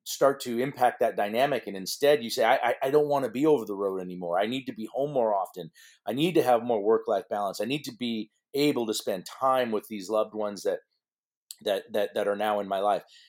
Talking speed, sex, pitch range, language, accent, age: 250 wpm, male, 105-145 Hz, English, American, 40-59